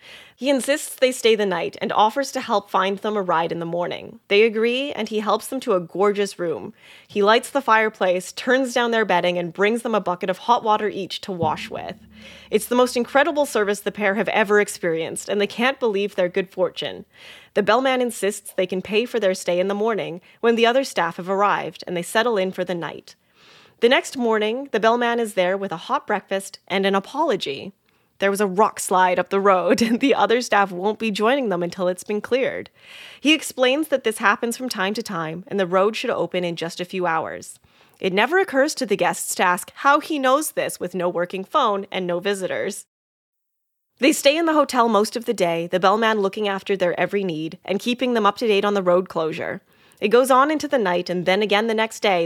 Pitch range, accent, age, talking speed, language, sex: 185-235 Hz, American, 20-39, 230 wpm, English, female